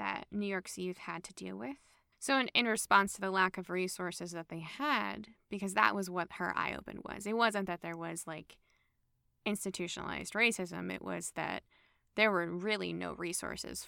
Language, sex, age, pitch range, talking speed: English, female, 10-29, 175-220 Hz, 185 wpm